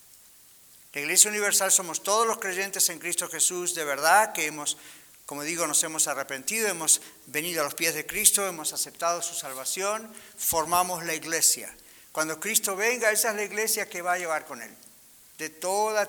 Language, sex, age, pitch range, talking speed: English, male, 50-69, 155-195 Hz, 180 wpm